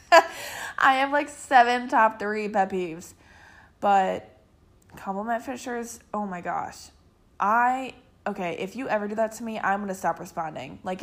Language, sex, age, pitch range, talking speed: English, female, 20-39, 180-230 Hz, 160 wpm